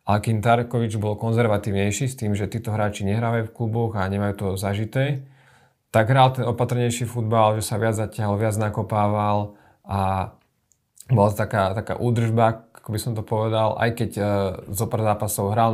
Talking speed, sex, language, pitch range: 170 wpm, male, Slovak, 100-115 Hz